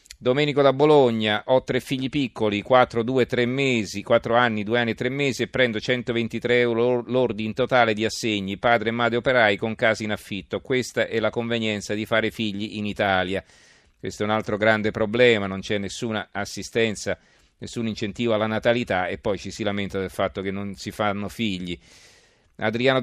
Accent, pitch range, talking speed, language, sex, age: native, 105-120 Hz, 175 wpm, Italian, male, 40-59